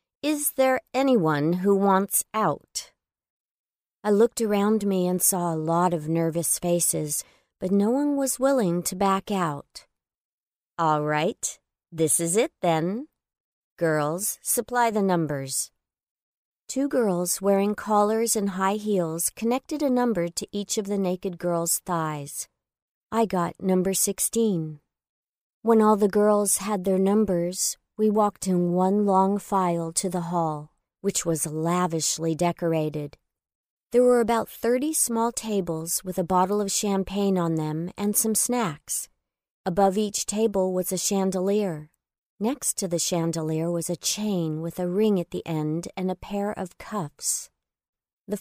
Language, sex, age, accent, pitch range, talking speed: English, female, 50-69, American, 170-210 Hz, 145 wpm